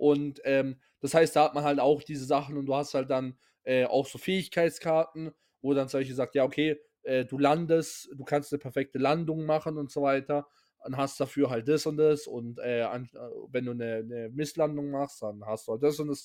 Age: 20-39